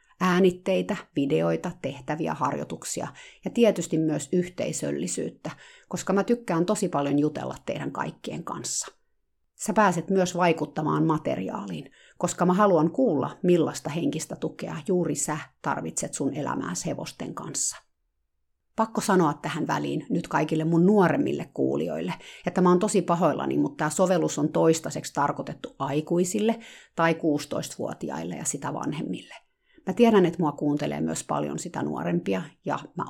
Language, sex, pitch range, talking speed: Finnish, female, 150-200 Hz, 130 wpm